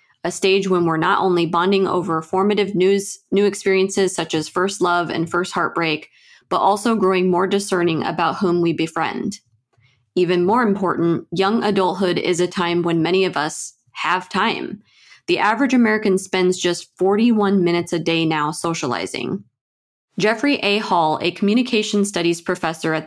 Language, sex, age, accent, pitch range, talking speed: English, female, 20-39, American, 165-200 Hz, 155 wpm